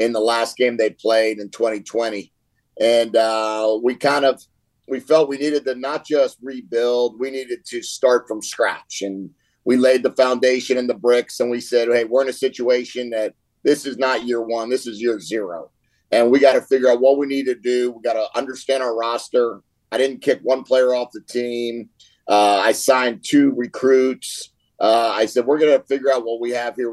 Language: English